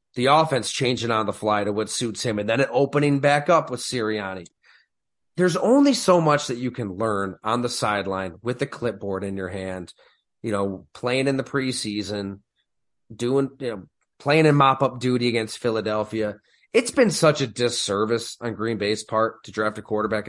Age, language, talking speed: 30-49, English, 190 wpm